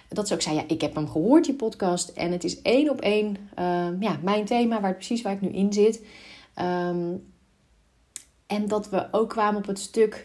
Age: 30-49